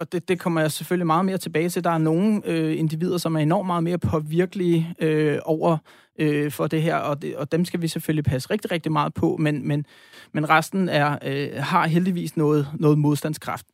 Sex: male